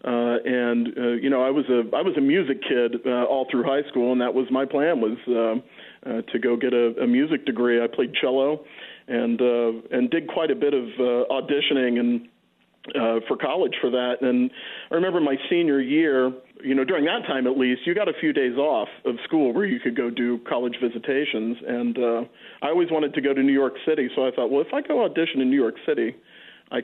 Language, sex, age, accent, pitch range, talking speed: English, male, 40-59, American, 120-145 Hz, 235 wpm